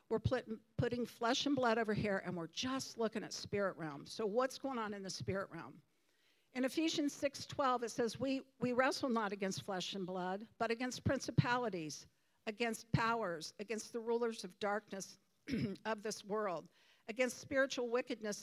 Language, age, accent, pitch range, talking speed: English, 50-69, American, 200-250 Hz, 170 wpm